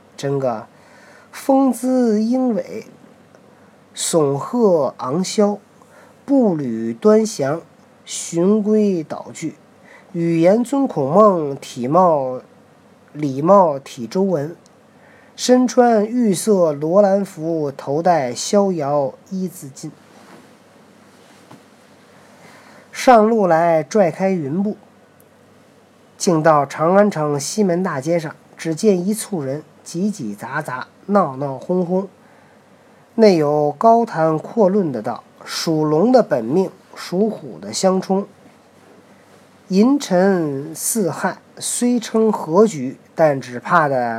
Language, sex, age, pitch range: Chinese, male, 40-59, 150-210 Hz